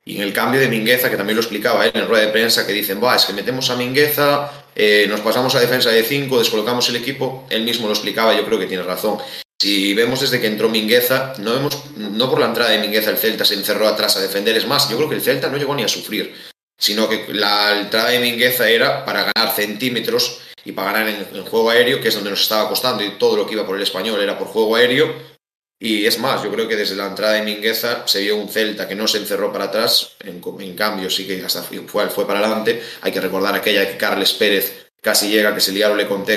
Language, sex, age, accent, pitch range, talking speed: Spanish, male, 20-39, Spanish, 105-130 Hz, 260 wpm